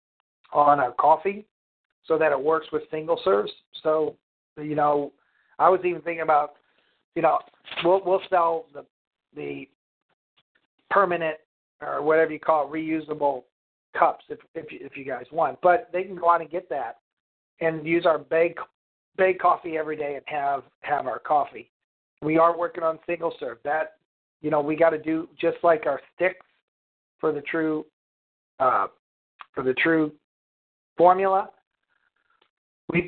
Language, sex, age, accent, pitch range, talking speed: English, male, 50-69, American, 145-170 Hz, 155 wpm